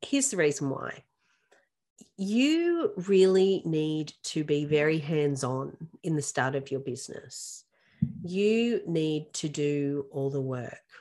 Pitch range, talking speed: 145-175 Hz, 130 wpm